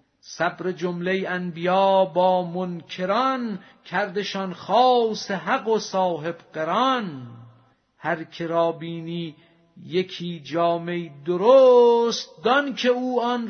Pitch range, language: 170-220 Hz, Persian